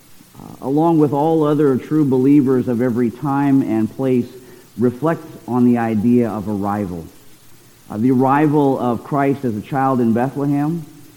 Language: English